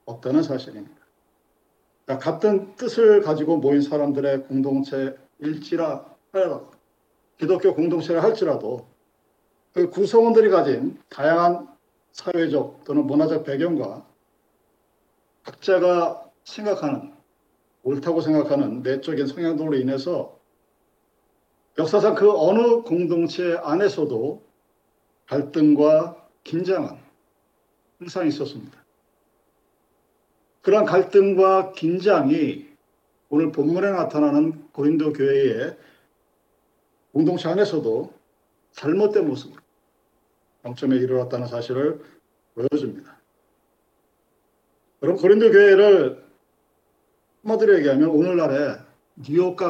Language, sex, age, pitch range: Korean, male, 50-69, 145-205 Hz